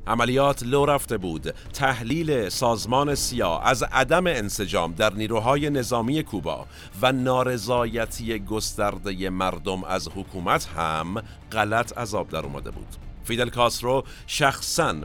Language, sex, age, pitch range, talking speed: Persian, male, 50-69, 95-120 Hz, 115 wpm